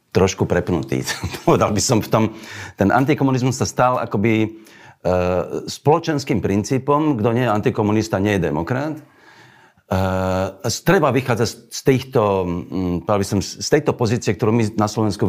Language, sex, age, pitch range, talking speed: Slovak, male, 40-59, 85-120 Hz, 145 wpm